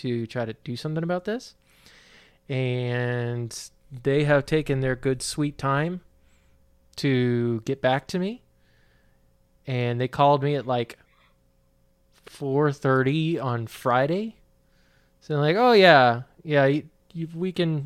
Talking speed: 130 wpm